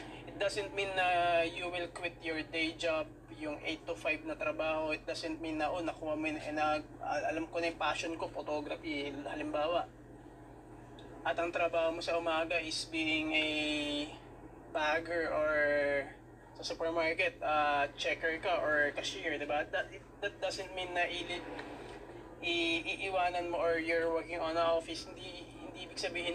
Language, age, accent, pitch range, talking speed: Filipino, 20-39, native, 155-185 Hz, 155 wpm